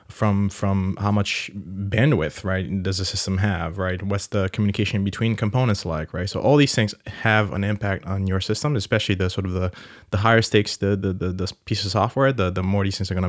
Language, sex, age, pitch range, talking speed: English, male, 20-39, 95-110 Hz, 225 wpm